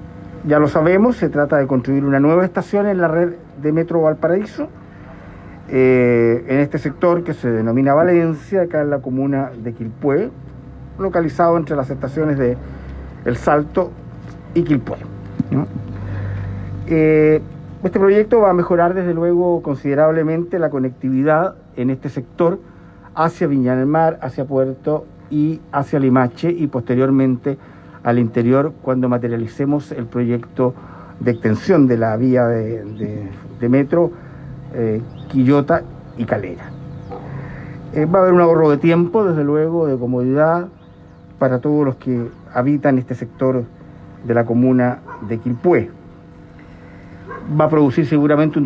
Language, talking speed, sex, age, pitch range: Spanish, 140 wpm, male, 50-69, 125-160 Hz